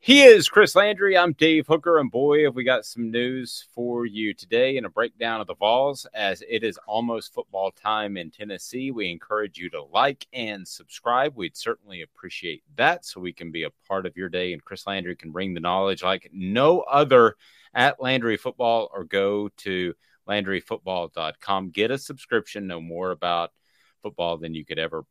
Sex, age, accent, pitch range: male, 30-49, American, 90-115 Hz